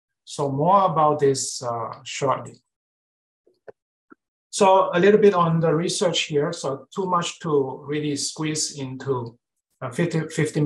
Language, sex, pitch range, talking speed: English, male, 135-170 Hz, 130 wpm